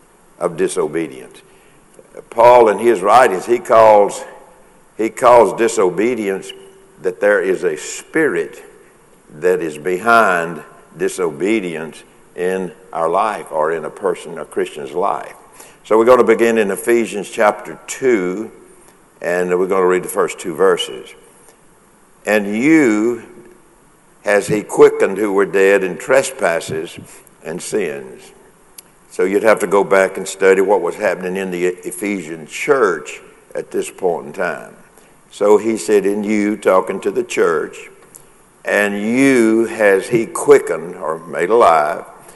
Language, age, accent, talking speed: English, 60-79, American, 135 wpm